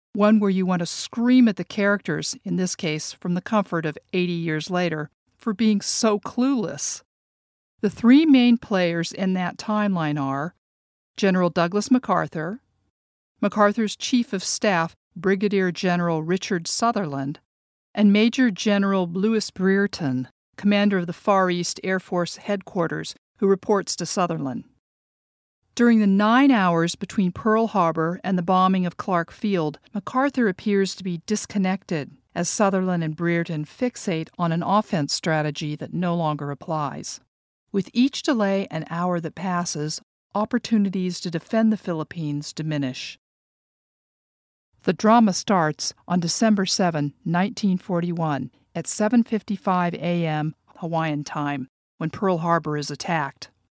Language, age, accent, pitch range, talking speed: English, 50-69, American, 160-205 Hz, 135 wpm